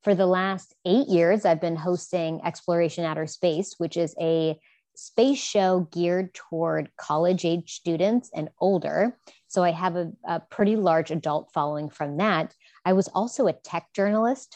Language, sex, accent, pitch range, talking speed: English, female, American, 160-190 Hz, 165 wpm